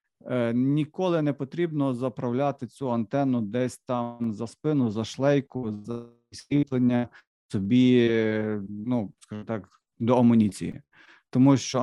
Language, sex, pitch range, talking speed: Ukrainian, male, 115-130 Hz, 100 wpm